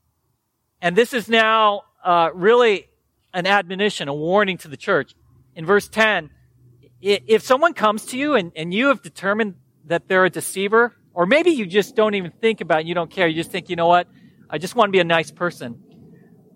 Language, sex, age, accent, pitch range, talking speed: English, male, 40-59, American, 170-230 Hz, 205 wpm